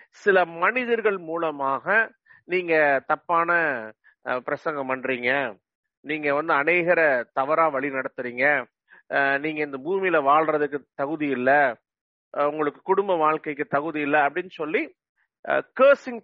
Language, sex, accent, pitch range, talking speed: English, male, Indian, 145-200 Hz, 95 wpm